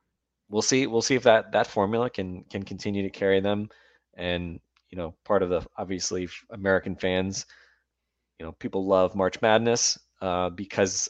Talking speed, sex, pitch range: 170 wpm, male, 90-100 Hz